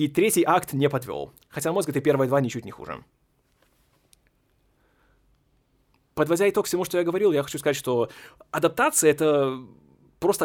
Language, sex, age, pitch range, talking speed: Russian, male, 20-39, 130-175 Hz, 150 wpm